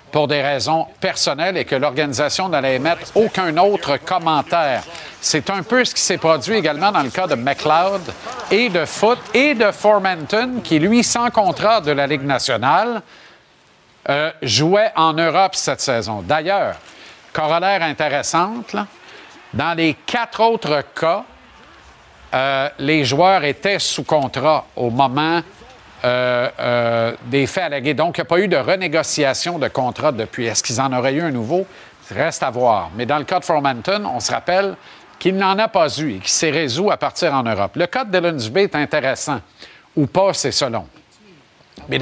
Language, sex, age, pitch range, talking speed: French, male, 50-69, 130-190 Hz, 175 wpm